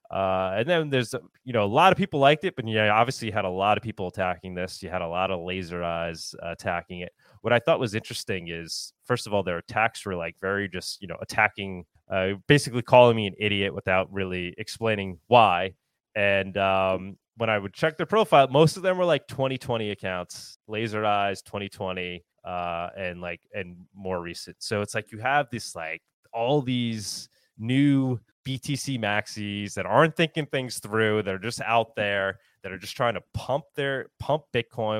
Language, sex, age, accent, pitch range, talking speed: English, male, 20-39, American, 95-120 Hz, 200 wpm